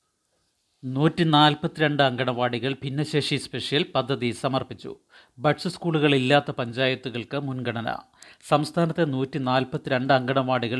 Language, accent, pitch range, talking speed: Malayalam, native, 125-145 Hz, 95 wpm